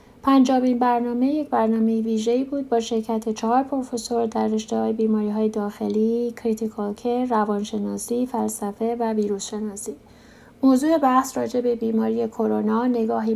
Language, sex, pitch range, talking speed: Persian, female, 215-245 Hz, 120 wpm